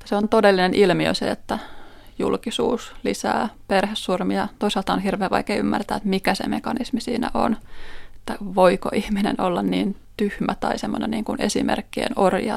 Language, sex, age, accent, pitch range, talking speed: Finnish, female, 20-39, native, 195-240 Hz, 150 wpm